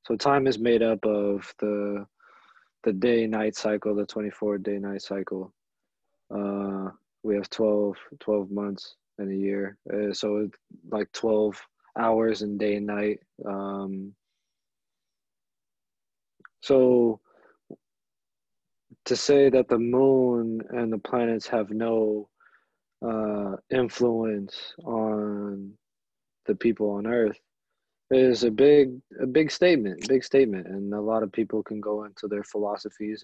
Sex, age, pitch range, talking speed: male, 20-39, 100-115 Hz, 125 wpm